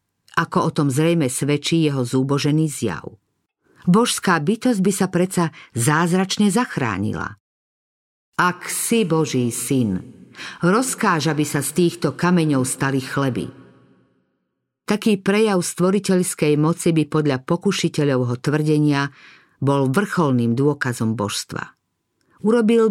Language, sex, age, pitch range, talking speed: Slovak, female, 50-69, 130-180 Hz, 105 wpm